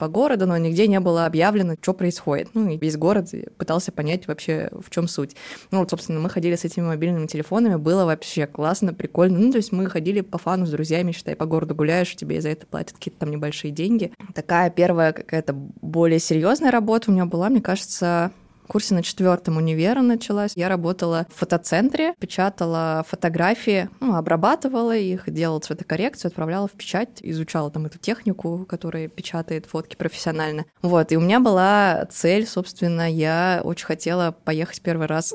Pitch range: 165-200 Hz